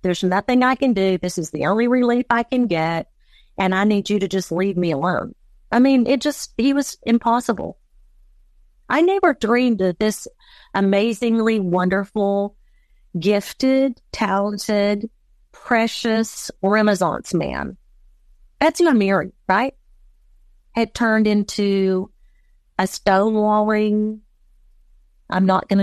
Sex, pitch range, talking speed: female, 195-270 Hz, 125 wpm